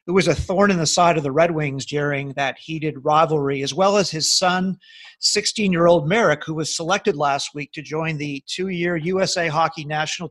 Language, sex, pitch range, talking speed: English, male, 155-205 Hz, 200 wpm